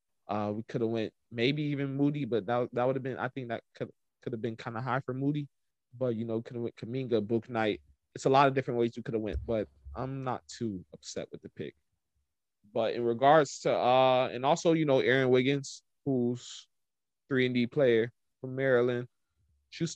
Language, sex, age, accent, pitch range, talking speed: English, male, 20-39, American, 115-140 Hz, 215 wpm